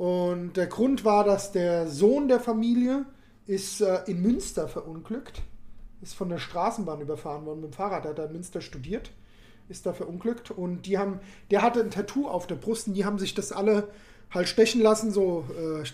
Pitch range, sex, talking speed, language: 180-225 Hz, male, 205 wpm, German